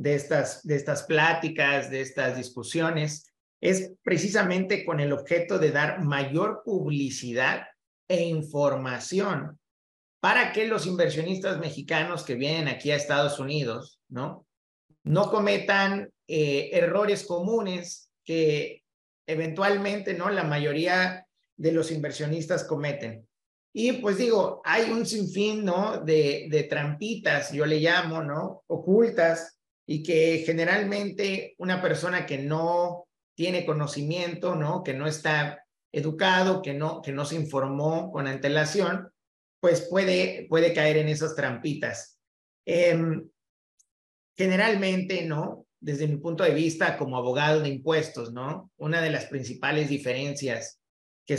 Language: Spanish